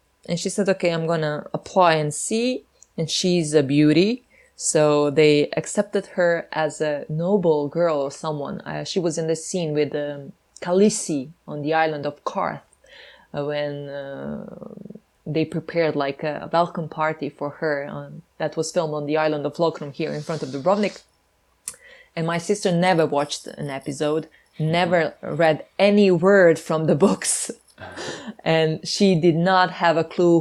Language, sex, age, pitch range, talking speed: English, female, 20-39, 150-180 Hz, 165 wpm